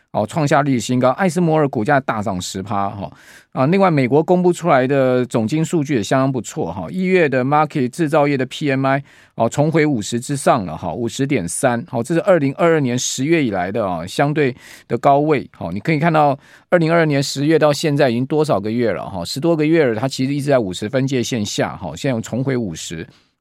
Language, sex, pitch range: Chinese, male, 120-155 Hz